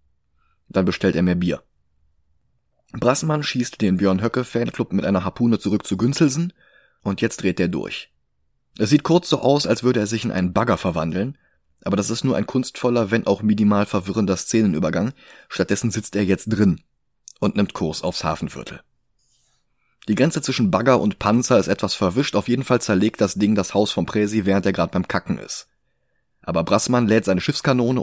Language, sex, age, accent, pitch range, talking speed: German, male, 30-49, German, 95-120 Hz, 180 wpm